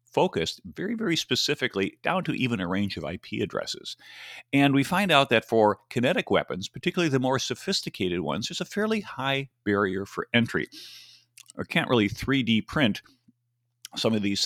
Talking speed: 165 wpm